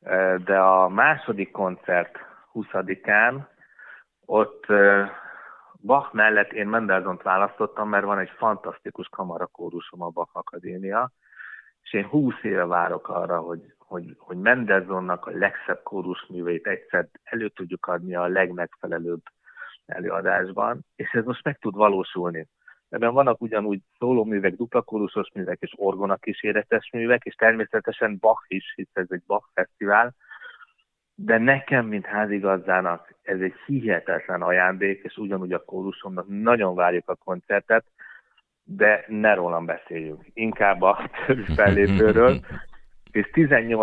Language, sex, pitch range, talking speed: Hungarian, male, 95-110 Hz, 120 wpm